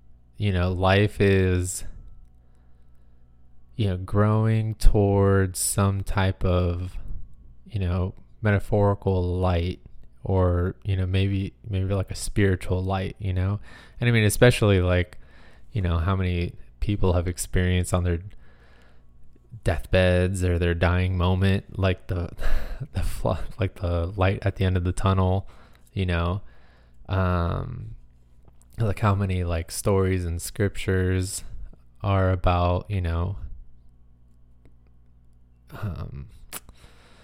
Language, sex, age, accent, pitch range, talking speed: English, male, 20-39, American, 75-100 Hz, 120 wpm